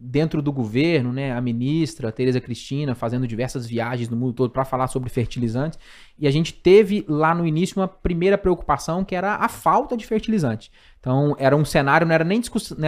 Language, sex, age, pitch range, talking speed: Portuguese, male, 20-39, 125-160 Hz, 185 wpm